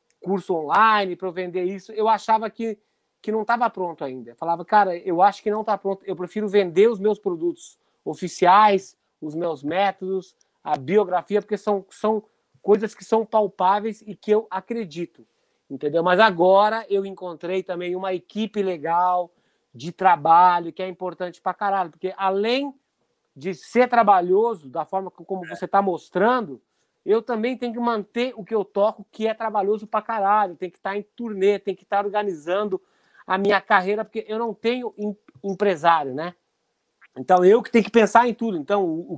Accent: Brazilian